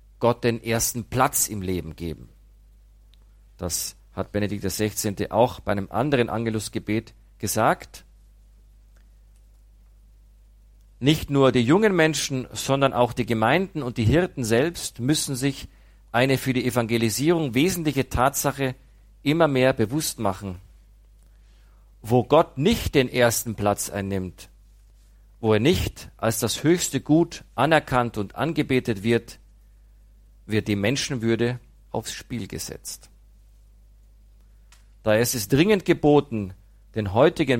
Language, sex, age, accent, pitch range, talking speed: German, male, 50-69, German, 100-125 Hz, 115 wpm